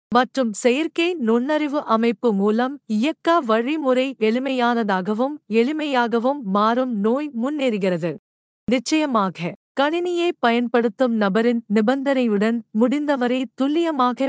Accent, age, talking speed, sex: native, 50-69, 80 wpm, female